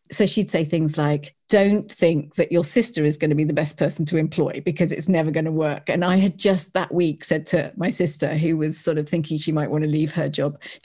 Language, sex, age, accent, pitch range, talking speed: English, female, 40-59, British, 155-185 Hz, 265 wpm